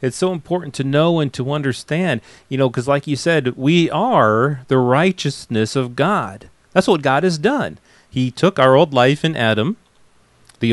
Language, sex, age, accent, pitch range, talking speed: English, male, 40-59, American, 115-150 Hz, 185 wpm